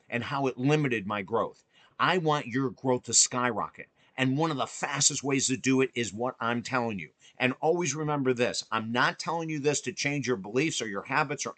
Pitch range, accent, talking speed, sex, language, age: 120-155 Hz, American, 225 wpm, male, English, 50-69